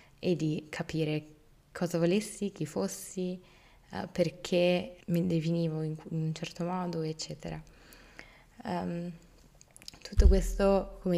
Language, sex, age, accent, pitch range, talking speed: Italian, female, 20-39, native, 160-180 Hz, 95 wpm